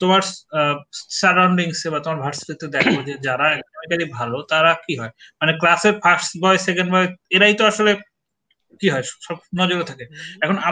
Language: Bengali